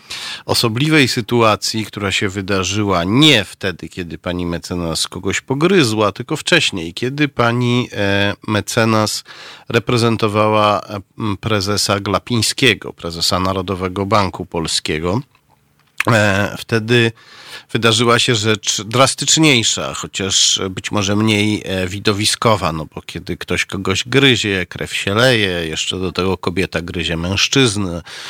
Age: 40-59